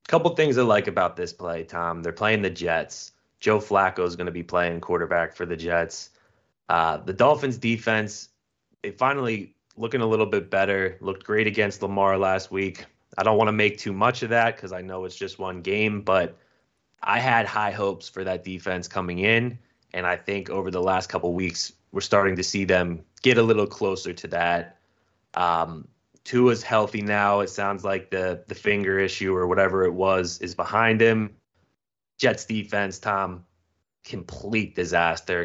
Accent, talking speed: American, 185 wpm